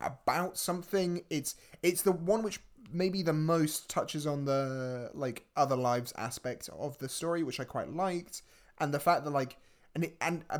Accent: British